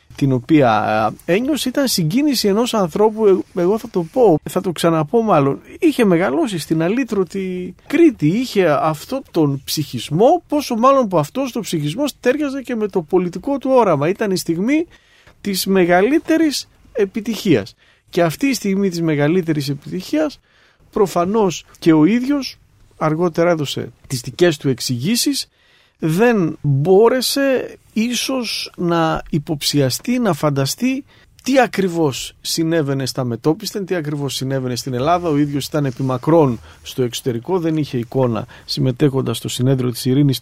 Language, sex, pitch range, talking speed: Greek, male, 135-210 Hz, 135 wpm